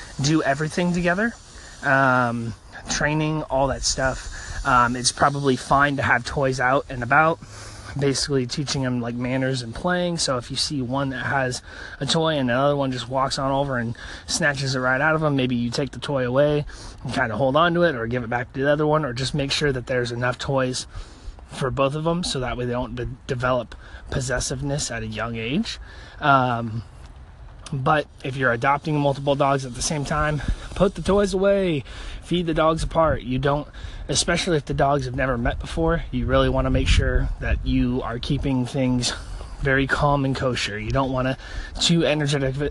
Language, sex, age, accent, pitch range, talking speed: English, male, 20-39, American, 120-145 Hz, 200 wpm